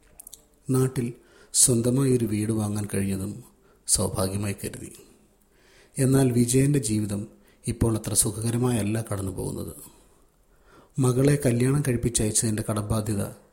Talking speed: 95 wpm